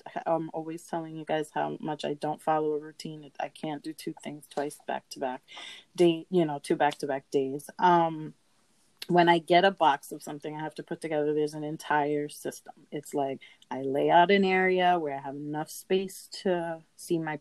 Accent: American